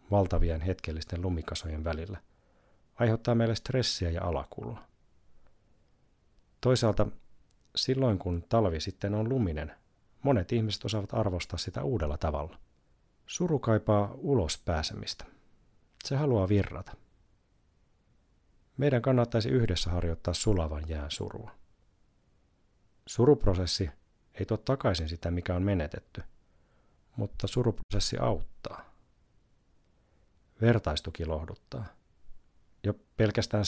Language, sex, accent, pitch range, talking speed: Finnish, male, native, 85-115 Hz, 90 wpm